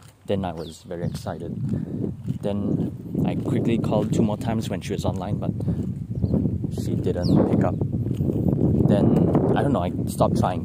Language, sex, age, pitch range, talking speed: English, male, 20-39, 95-120 Hz, 160 wpm